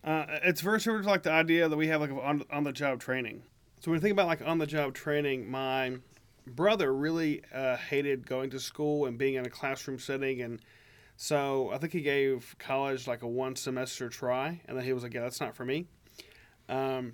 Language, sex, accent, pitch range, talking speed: English, male, American, 125-150 Hz, 205 wpm